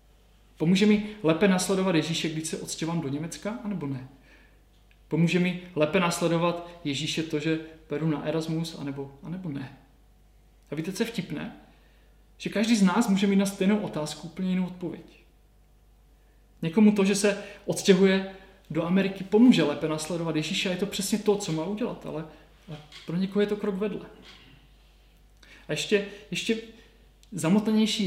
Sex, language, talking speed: male, Czech, 150 wpm